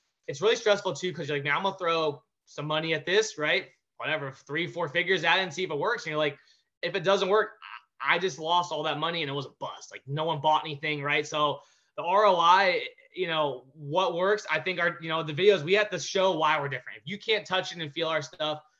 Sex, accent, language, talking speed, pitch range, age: male, American, English, 260 wpm, 155-195 Hz, 20-39